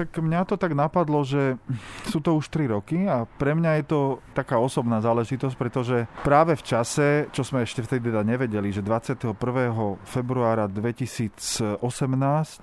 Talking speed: 150 wpm